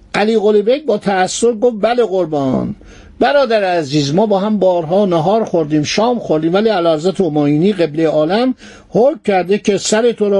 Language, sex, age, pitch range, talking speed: Persian, male, 50-69, 165-220 Hz, 160 wpm